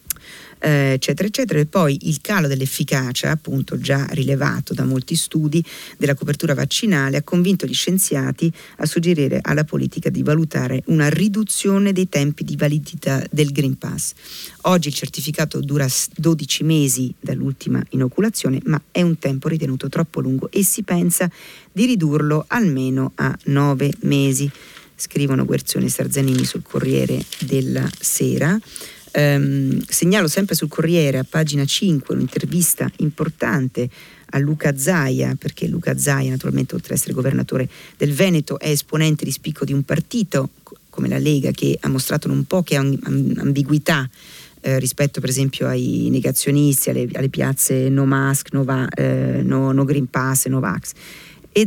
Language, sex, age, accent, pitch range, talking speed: Italian, female, 40-59, native, 135-165 Hz, 145 wpm